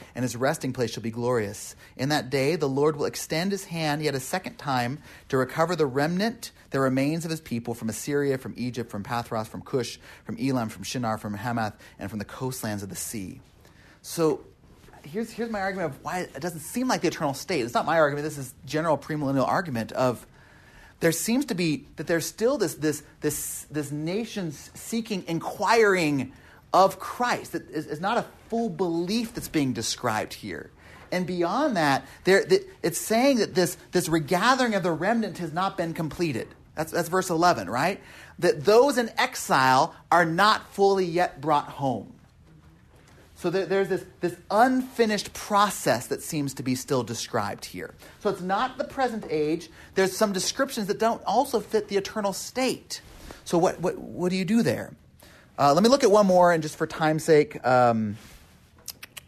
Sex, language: male, English